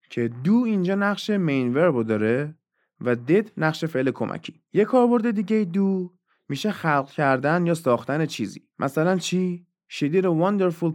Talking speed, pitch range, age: 145 wpm, 115-175 Hz, 30-49